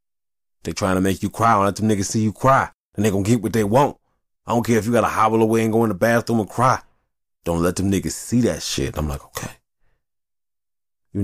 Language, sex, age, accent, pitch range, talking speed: English, male, 20-39, American, 85-130 Hz, 250 wpm